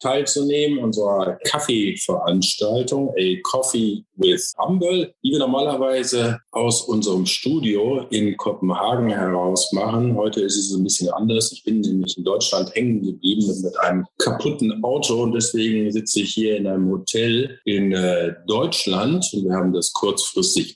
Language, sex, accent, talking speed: Danish, male, German, 140 wpm